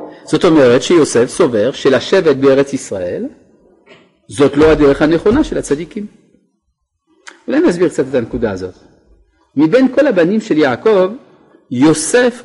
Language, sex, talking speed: Hebrew, male, 120 wpm